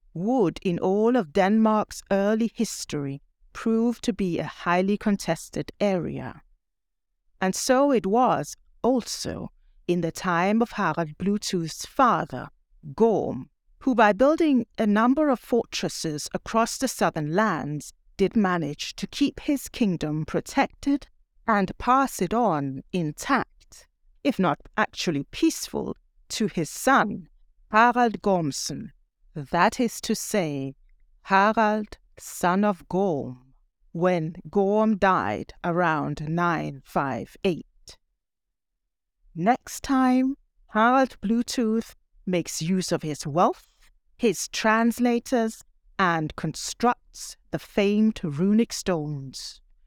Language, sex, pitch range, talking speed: English, female, 170-235 Hz, 105 wpm